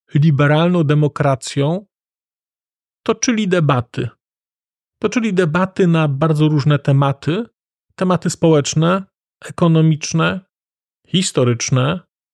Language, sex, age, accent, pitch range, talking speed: Polish, male, 40-59, native, 140-180 Hz, 70 wpm